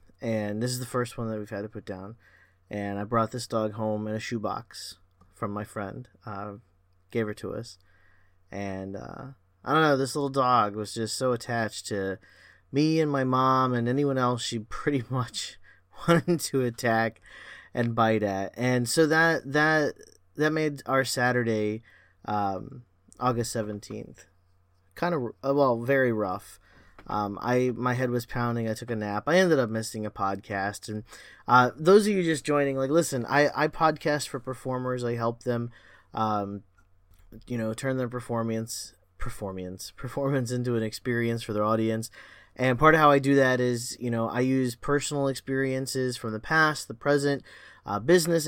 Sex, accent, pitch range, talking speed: male, American, 105-135 Hz, 175 wpm